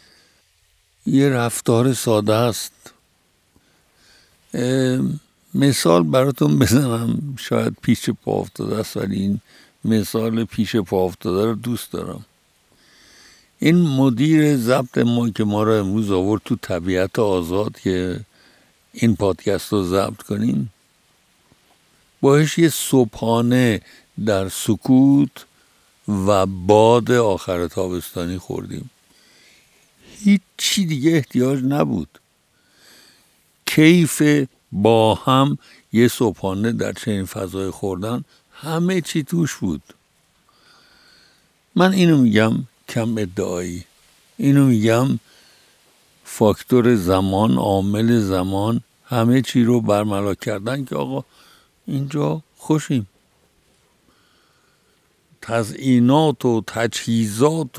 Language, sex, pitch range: Persian, male, 100-130 Hz